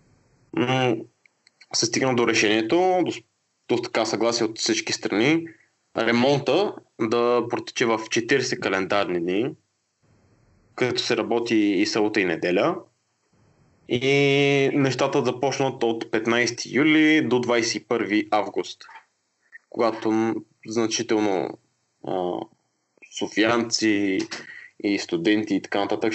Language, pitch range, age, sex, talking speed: Bulgarian, 105-135 Hz, 20-39, male, 100 wpm